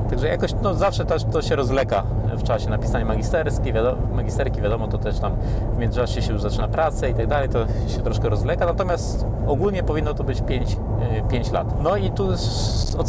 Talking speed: 190 wpm